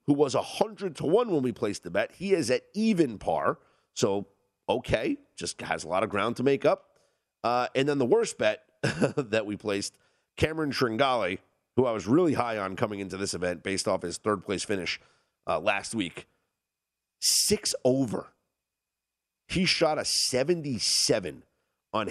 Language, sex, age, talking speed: English, male, 40-59, 175 wpm